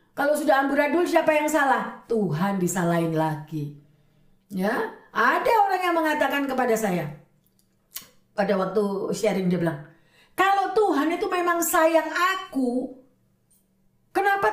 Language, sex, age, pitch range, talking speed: Indonesian, female, 50-69, 200-320 Hz, 120 wpm